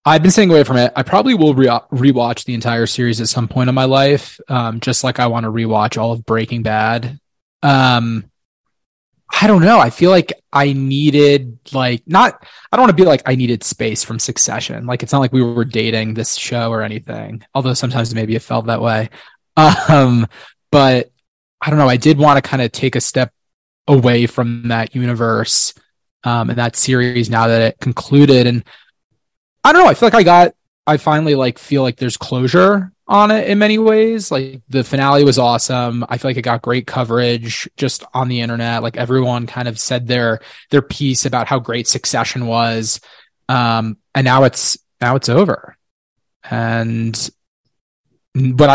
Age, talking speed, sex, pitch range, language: 20-39, 190 wpm, male, 115-140 Hz, English